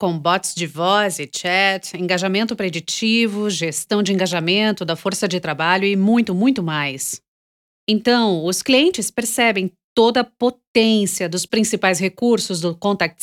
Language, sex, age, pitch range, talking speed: English, female, 40-59, 180-240 Hz, 140 wpm